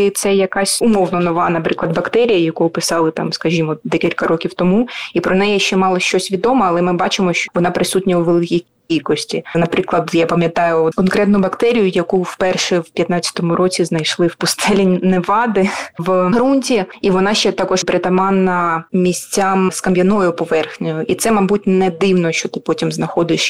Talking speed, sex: 160 wpm, female